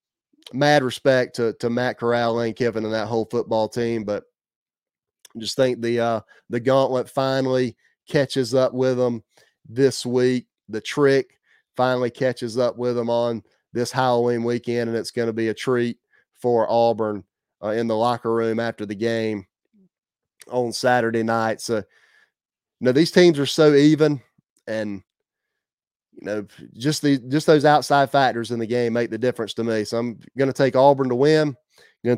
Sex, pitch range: male, 115-135 Hz